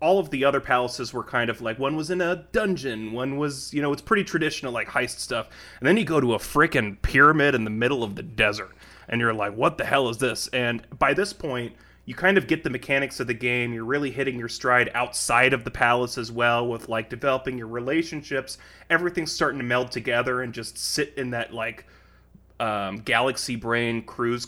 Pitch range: 115-135 Hz